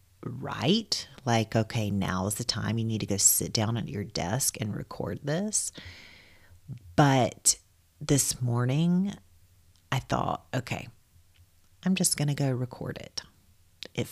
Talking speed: 140 wpm